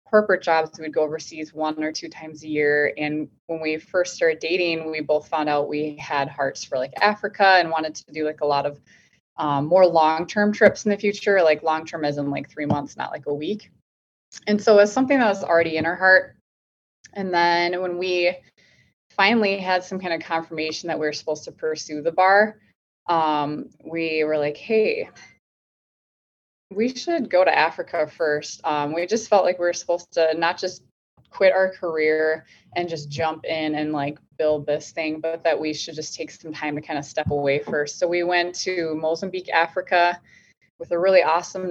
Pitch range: 150-180 Hz